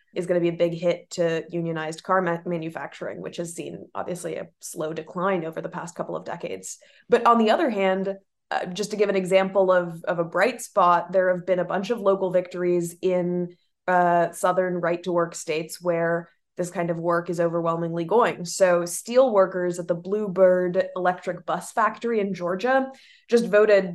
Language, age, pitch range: English, 20-39, 175-200 Hz